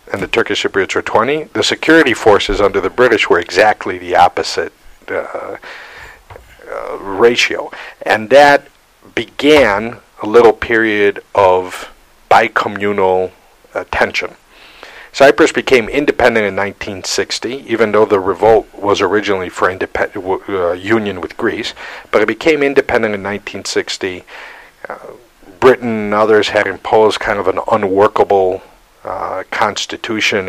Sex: male